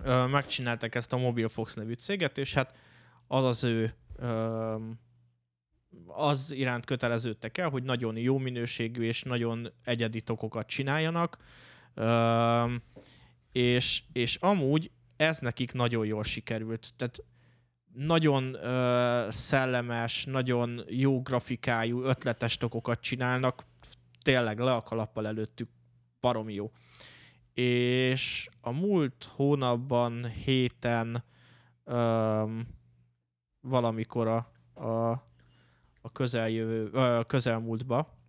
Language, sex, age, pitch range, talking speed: Hungarian, male, 20-39, 115-130 Hz, 90 wpm